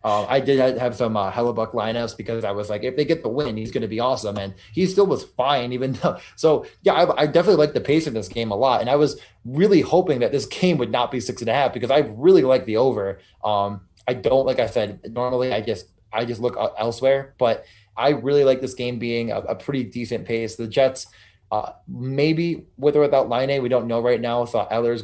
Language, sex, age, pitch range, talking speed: English, male, 20-39, 110-130 Hz, 250 wpm